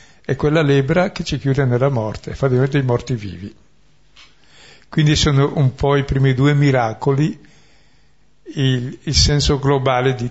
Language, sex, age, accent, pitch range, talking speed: Italian, male, 60-79, native, 120-145 Hz, 150 wpm